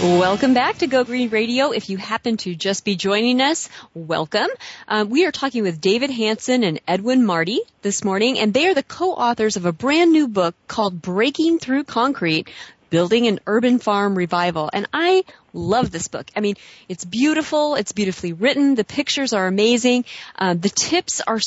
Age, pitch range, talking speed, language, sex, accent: 30-49, 185-255 Hz, 185 wpm, English, female, American